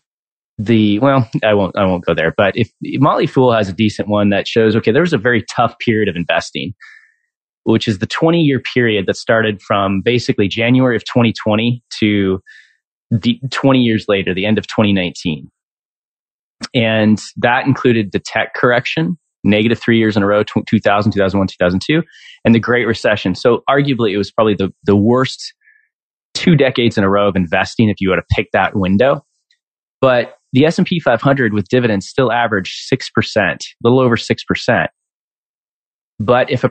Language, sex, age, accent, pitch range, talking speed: English, male, 30-49, American, 100-130 Hz, 175 wpm